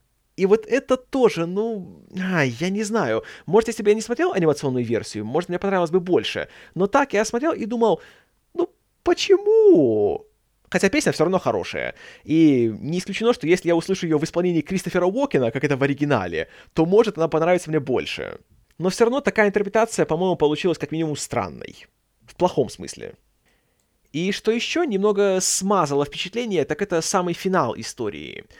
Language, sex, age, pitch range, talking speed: Russian, male, 20-39, 135-200 Hz, 170 wpm